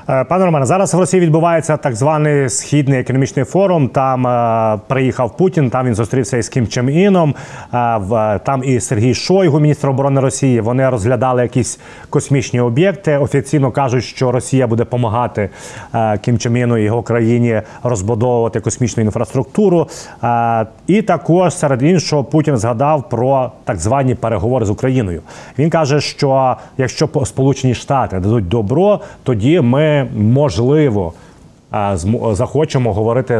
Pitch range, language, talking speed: 115-150 Hz, Ukrainian, 135 wpm